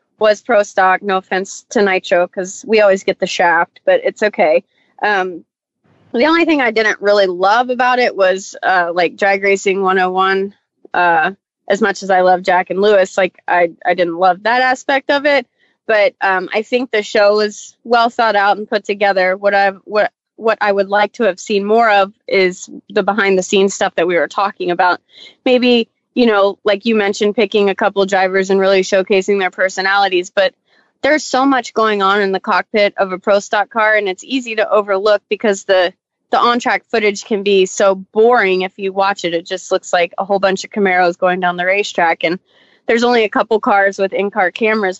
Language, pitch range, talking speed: English, 190-225 Hz, 205 wpm